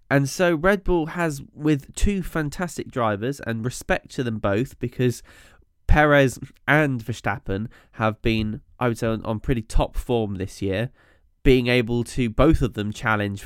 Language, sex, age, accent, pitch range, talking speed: English, male, 10-29, British, 110-150 Hz, 165 wpm